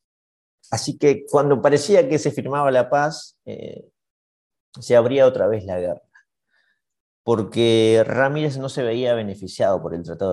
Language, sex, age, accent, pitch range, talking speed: Spanish, male, 30-49, Argentinian, 105-135 Hz, 145 wpm